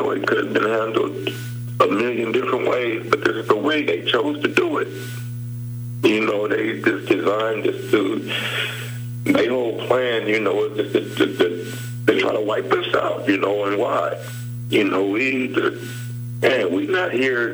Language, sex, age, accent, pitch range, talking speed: English, male, 60-79, American, 120-125 Hz, 180 wpm